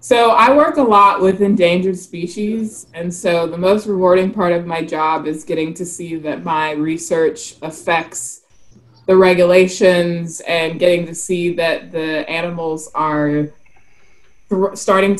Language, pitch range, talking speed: English, 160-190 Hz, 140 wpm